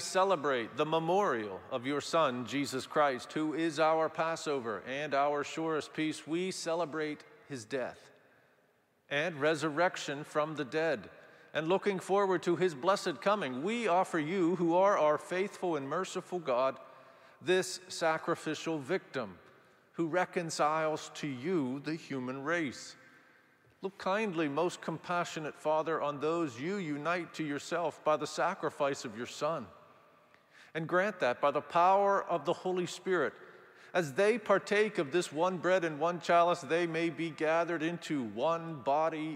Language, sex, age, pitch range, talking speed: English, male, 50-69, 145-180 Hz, 145 wpm